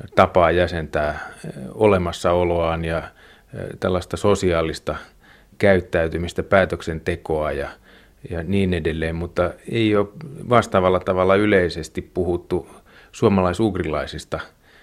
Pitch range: 85-100 Hz